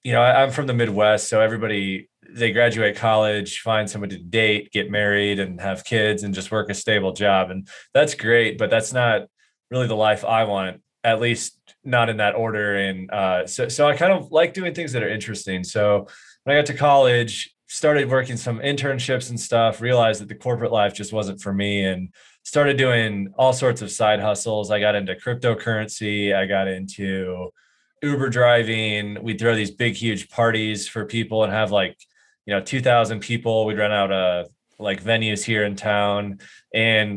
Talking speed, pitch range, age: 190 wpm, 100-120 Hz, 20-39